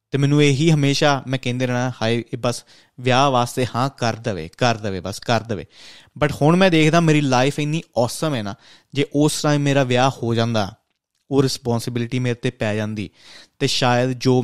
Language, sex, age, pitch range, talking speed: Punjabi, male, 20-39, 120-150 Hz, 185 wpm